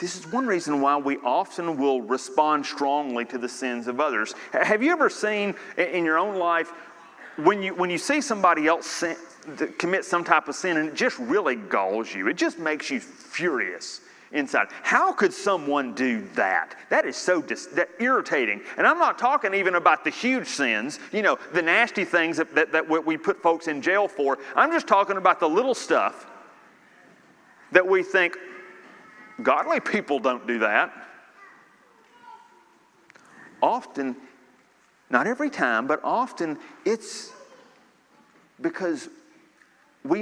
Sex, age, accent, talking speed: male, 30-49, American, 155 wpm